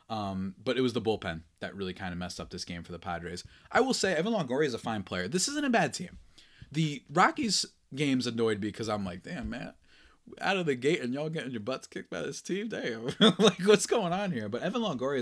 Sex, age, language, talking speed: male, 20-39, English, 250 wpm